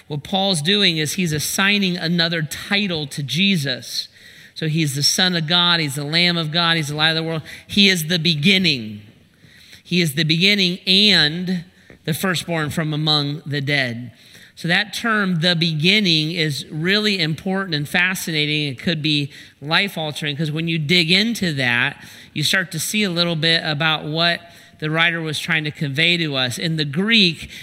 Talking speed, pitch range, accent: 180 wpm, 150-180 Hz, American